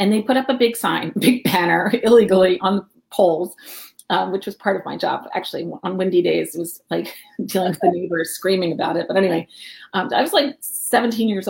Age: 30-49